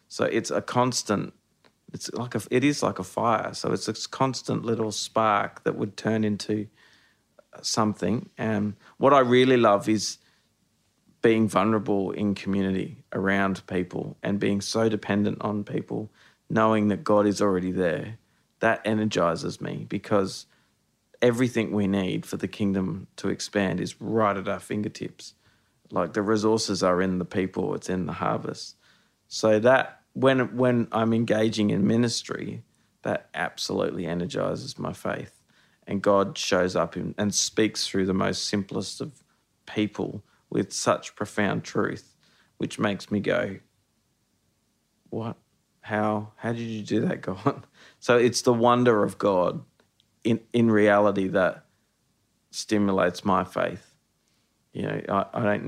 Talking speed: 145 wpm